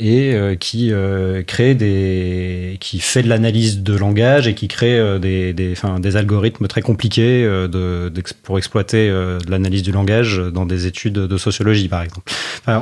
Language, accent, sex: French, French, male